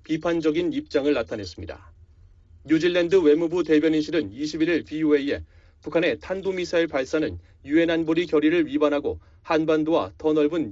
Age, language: 30-49, Korean